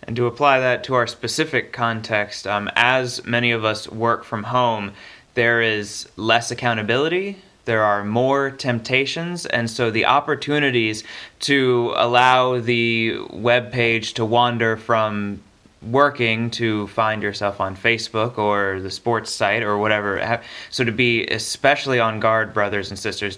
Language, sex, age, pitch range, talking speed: English, male, 20-39, 110-125 Hz, 145 wpm